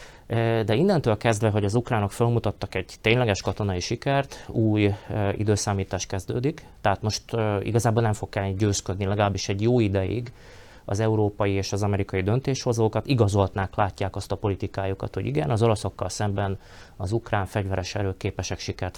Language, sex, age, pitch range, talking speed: Hungarian, male, 30-49, 95-115 Hz, 150 wpm